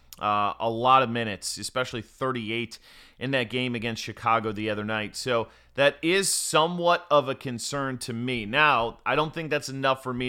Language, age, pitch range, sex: English, 30-49, 115-140 Hz, male